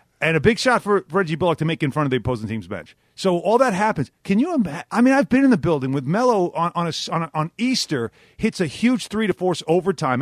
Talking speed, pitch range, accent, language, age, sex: 270 wpm, 135-195 Hz, American, English, 40-59, male